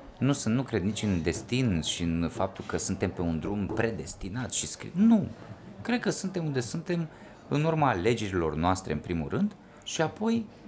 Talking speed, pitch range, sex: 185 wpm, 95-135 Hz, male